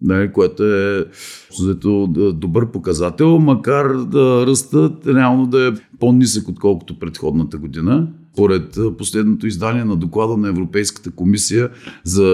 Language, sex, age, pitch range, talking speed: Bulgarian, male, 40-59, 90-135 Hz, 120 wpm